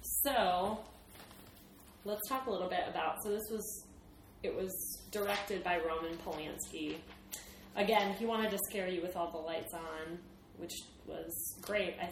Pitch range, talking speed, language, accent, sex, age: 170-215 Hz, 150 wpm, English, American, female, 20-39